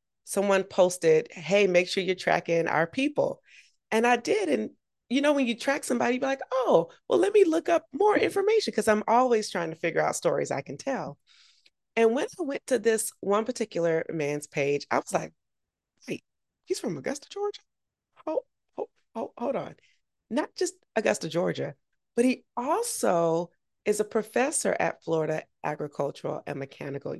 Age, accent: 30-49, American